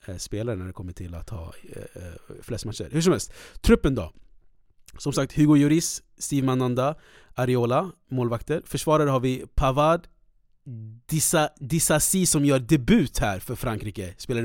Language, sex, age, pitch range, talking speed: Swedish, male, 30-49, 120-145 Hz, 145 wpm